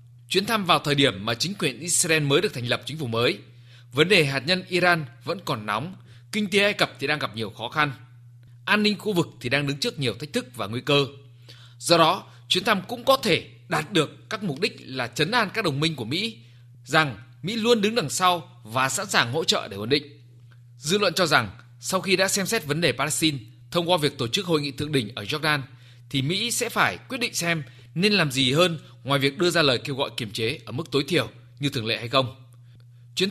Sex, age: male, 20-39